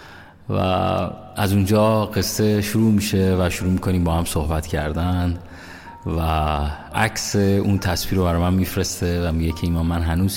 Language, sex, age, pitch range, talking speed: Persian, male, 30-49, 90-110 Hz, 155 wpm